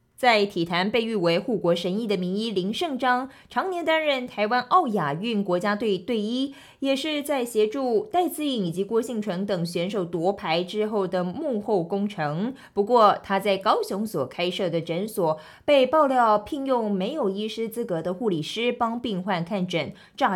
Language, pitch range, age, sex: Chinese, 180-240 Hz, 20-39, female